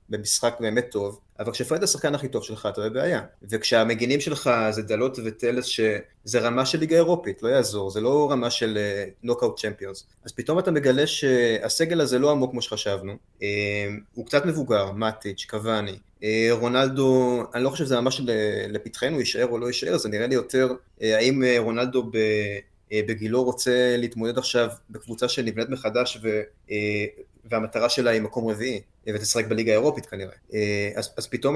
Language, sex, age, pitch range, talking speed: Hebrew, male, 20-39, 110-140 Hz, 155 wpm